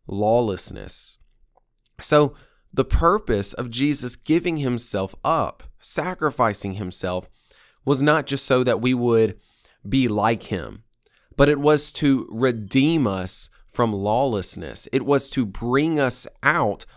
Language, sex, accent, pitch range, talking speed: English, male, American, 105-140 Hz, 125 wpm